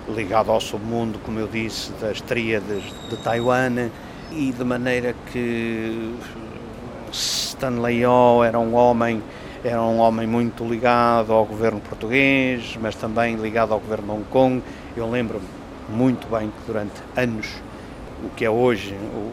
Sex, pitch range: male, 105-120 Hz